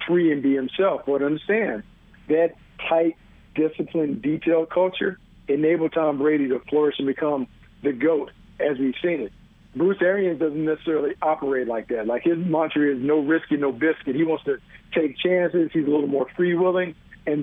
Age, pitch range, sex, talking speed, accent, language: 50-69, 150-180 Hz, male, 170 wpm, American, English